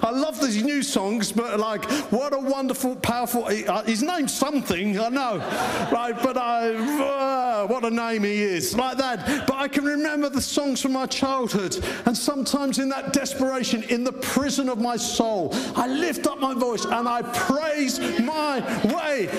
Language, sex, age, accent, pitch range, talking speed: English, male, 50-69, British, 175-265 Hz, 175 wpm